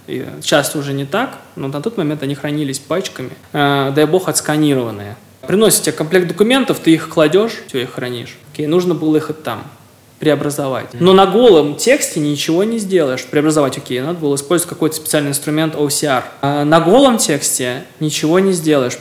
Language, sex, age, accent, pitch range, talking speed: Russian, male, 20-39, native, 135-160 Hz, 170 wpm